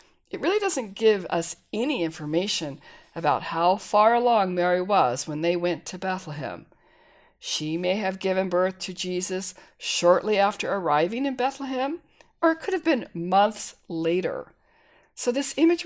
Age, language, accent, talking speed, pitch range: 50-69, English, American, 150 wpm, 165-225 Hz